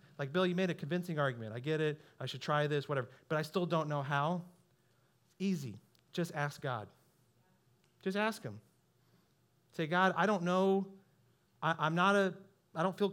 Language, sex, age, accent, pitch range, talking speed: English, male, 30-49, American, 175-220 Hz, 185 wpm